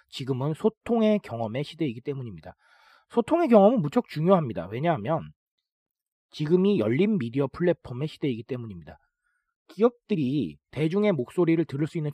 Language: Korean